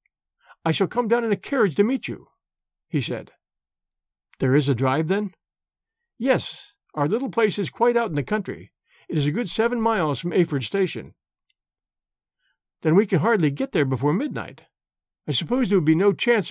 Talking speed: 185 wpm